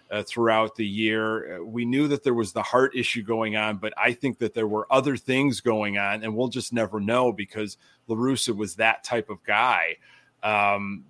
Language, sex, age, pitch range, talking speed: English, male, 30-49, 105-135 Hz, 205 wpm